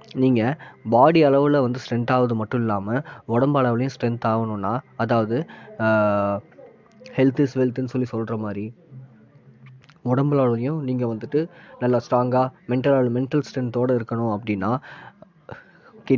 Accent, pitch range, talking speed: native, 115-135 Hz, 110 wpm